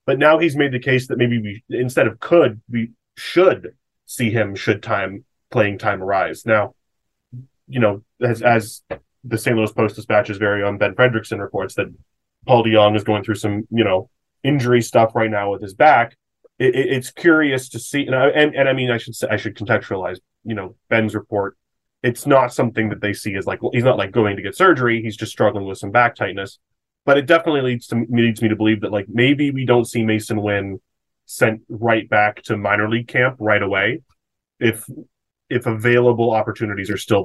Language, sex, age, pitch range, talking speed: English, male, 20-39, 105-125 Hz, 210 wpm